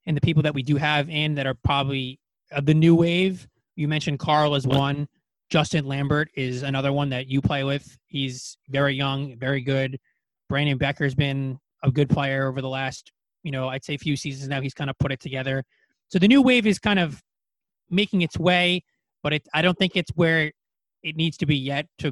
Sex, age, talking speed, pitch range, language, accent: male, 20-39, 215 wpm, 130-150 Hz, English, American